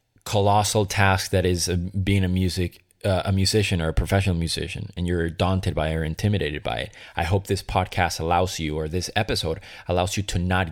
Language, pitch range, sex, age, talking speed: English, 90-105 Hz, male, 20-39, 190 wpm